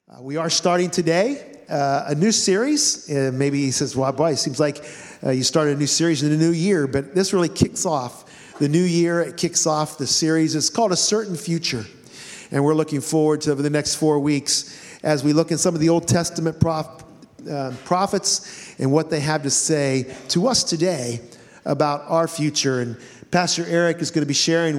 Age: 50-69